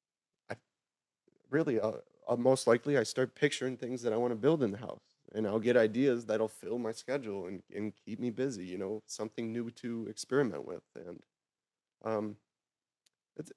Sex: male